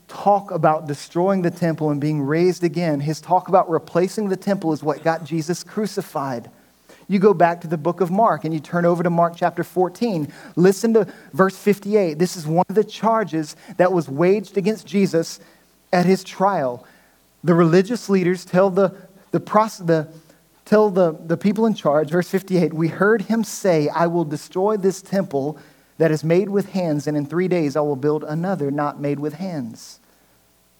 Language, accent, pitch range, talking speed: English, American, 145-185 Hz, 185 wpm